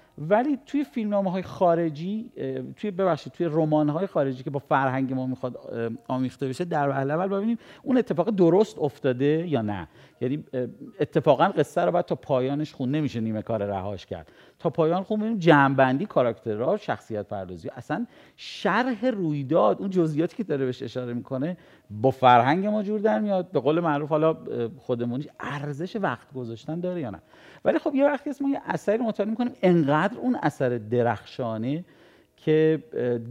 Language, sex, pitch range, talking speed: Persian, male, 125-175 Hz, 160 wpm